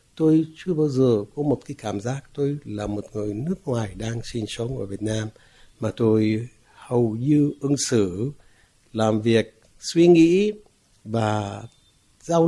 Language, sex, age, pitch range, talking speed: Vietnamese, male, 60-79, 105-135 Hz, 160 wpm